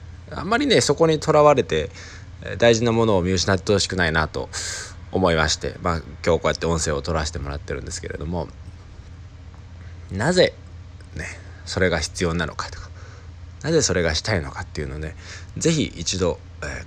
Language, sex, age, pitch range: Japanese, male, 20-39, 85-95 Hz